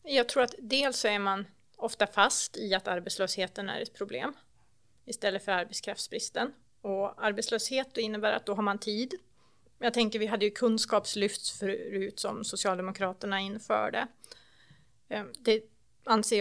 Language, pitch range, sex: Swedish, 195-220 Hz, female